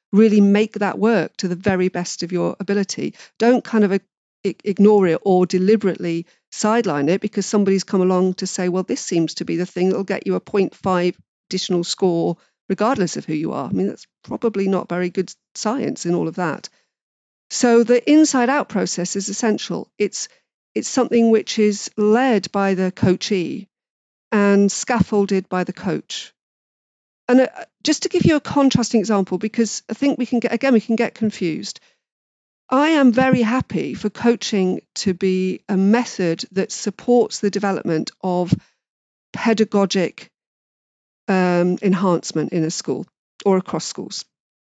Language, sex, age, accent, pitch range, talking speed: English, female, 50-69, British, 185-225 Hz, 165 wpm